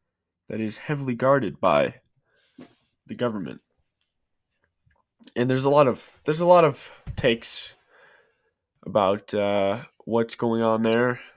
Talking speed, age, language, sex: 120 wpm, 20-39, English, male